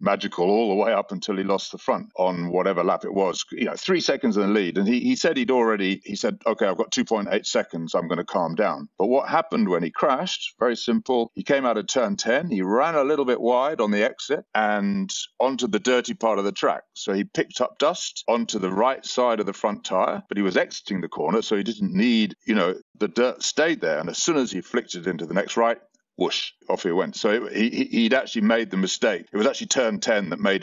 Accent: British